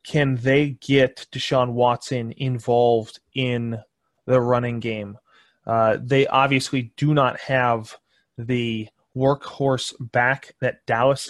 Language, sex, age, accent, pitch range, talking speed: English, male, 20-39, American, 125-150 Hz, 110 wpm